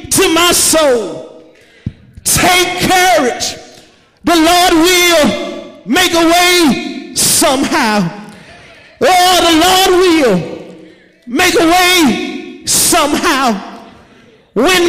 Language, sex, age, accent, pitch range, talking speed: English, male, 40-59, American, 275-350 Hz, 85 wpm